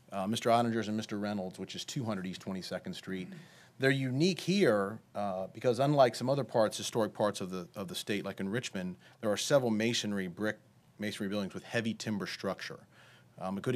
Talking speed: 195 wpm